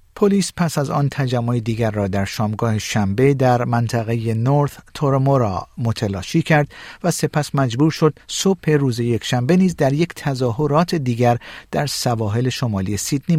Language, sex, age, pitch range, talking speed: Persian, male, 50-69, 110-150 Hz, 145 wpm